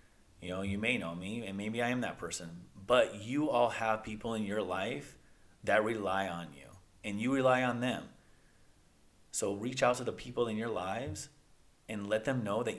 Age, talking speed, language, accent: 30-49, 200 wpm, English, American